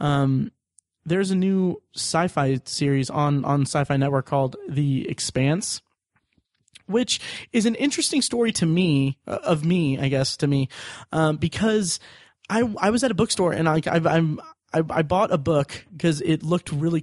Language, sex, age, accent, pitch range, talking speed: English, male, 30-49, American, 145-190 Hz, 165 wpm